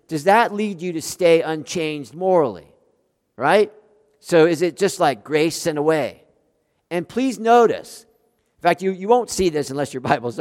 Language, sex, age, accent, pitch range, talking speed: English, male, 50-69, American, 150-200 Hz, 175 wpm